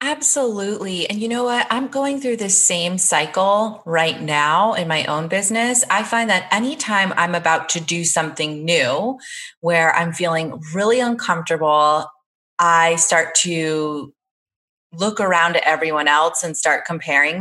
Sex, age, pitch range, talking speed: female, 30-49, 160-220 Hz, 150 wpm